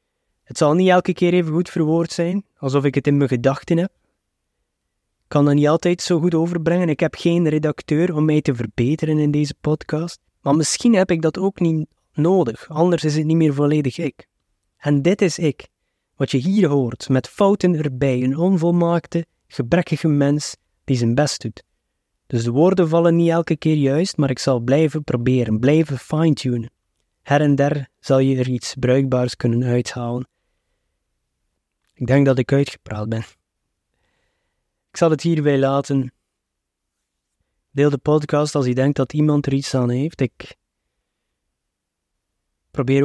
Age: 20-39